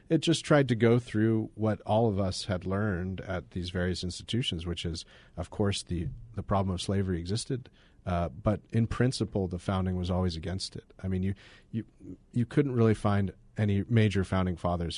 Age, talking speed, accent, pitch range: 40-59, 190 wpm, American, 90-110 Hz